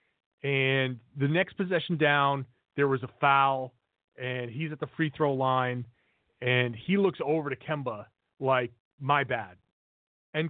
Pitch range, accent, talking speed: 125-190 Hz, American, 150 wpm